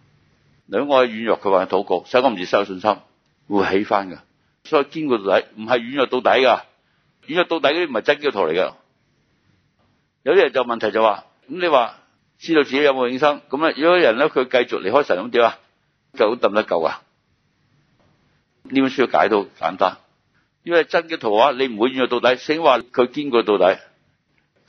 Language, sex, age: Chinese, male, 60-79